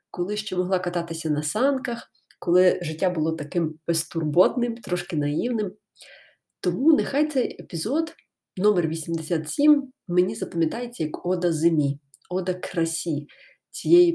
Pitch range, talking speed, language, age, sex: 165-210 Hz, 115 wpm, Ukrainian, 20-39, female